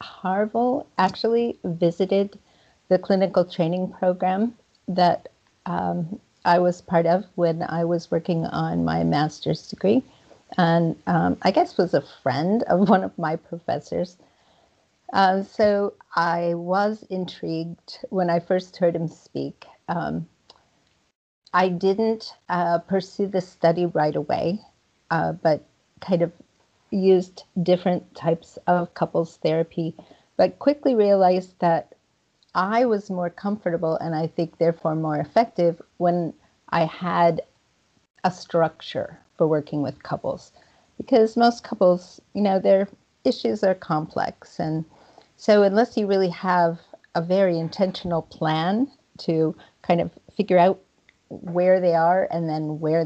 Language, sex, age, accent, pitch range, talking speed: English, female, 50-69, American, 165-195 Hz, 130 wpm